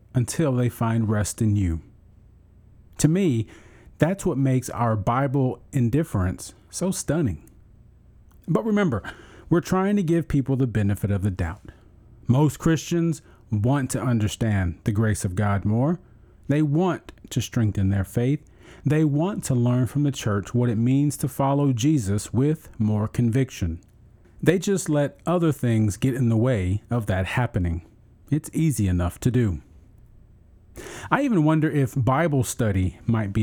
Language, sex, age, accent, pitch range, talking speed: English, male, 40-59, American, 105-140 Hz, 155 wpm